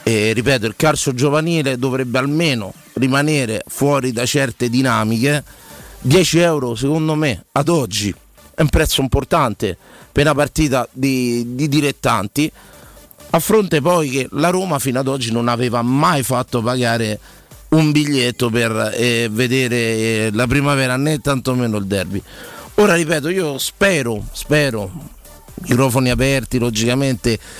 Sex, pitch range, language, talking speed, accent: male, 125-150 Hz, Italian, 130 wpm, native